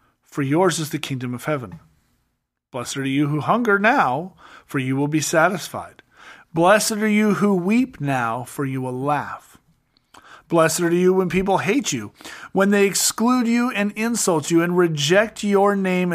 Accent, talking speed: American, 170 wpm